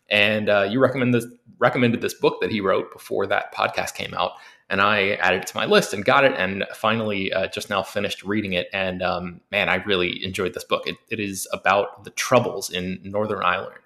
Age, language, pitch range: 20-39, English, 95-120 Hz